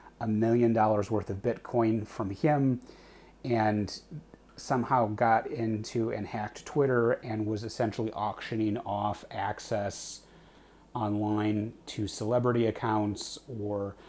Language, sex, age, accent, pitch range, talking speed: English, male, 30-49, American, 105-120 Hz, 110 wpm